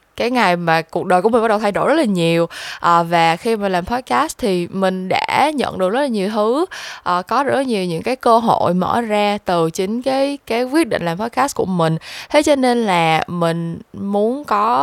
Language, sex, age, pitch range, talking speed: Vietnamese, female, 10-29, 180-240 Hz, 225 wpm